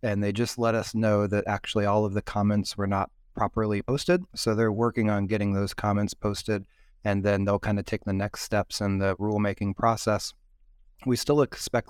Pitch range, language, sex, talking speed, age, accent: 100-115 Hz, English, male, 200 wpm, 20-39, American